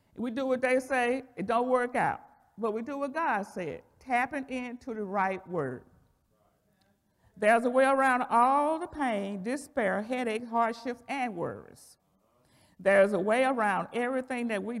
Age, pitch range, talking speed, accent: 50-69, 200-255 Hz, 160 wpm, American